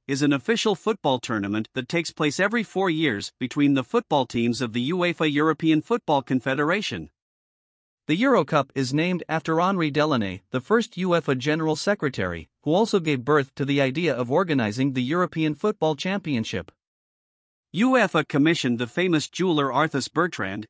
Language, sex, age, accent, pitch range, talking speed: English, male, 50-69, American, 130-170 Hz, 155 wpm